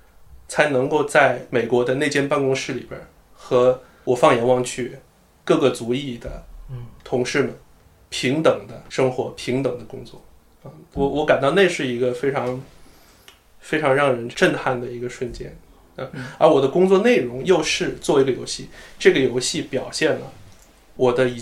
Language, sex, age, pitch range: Chinese, male, 20-39, 120-135 Hz